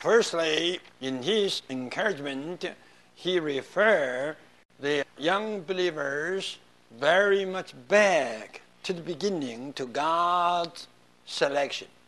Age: 60-79